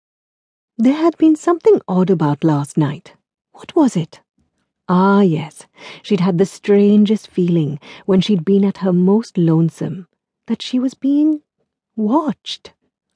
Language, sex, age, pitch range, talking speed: English, female, 50-69, 175-250 Hz, 135 wpm